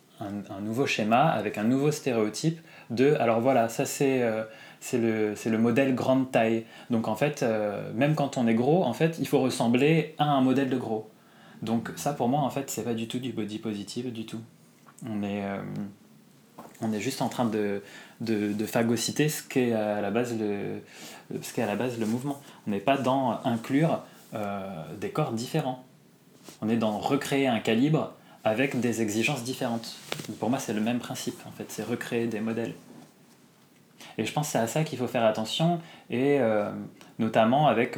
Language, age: French, 20-39